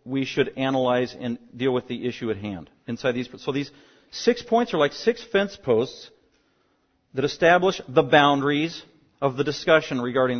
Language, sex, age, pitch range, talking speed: English, male, 40-59, 130-155 Hz, 165 wpm